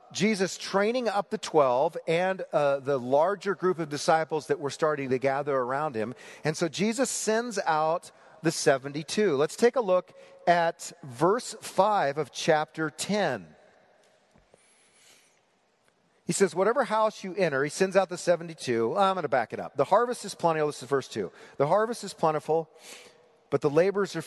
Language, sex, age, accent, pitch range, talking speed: English, male, 40-59, American, 140-185 Hz, 170 wpm